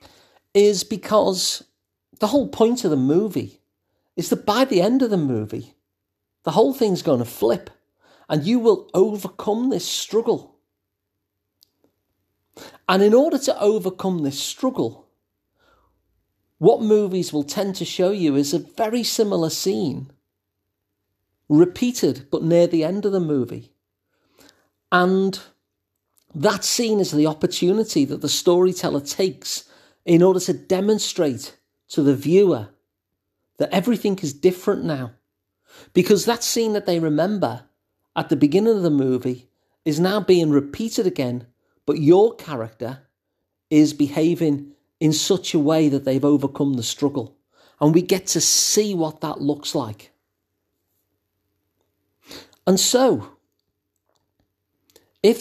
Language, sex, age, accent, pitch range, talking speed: English, male, 40-59, British, 120-200 Hz, 130 wpm